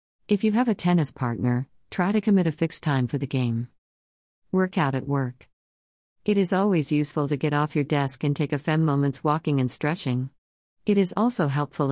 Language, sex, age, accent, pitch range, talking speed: English, female, 50-69, American, 125-160 Hz, 195 wpm